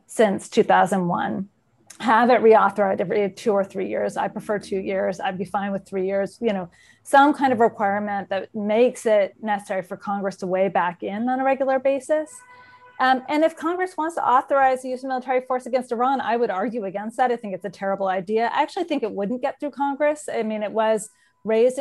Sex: female